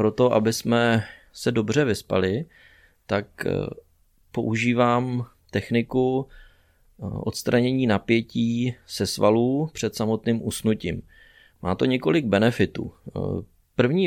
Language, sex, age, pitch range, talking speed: Czech, male, 30-49, 100-120 Hz, 90 wpm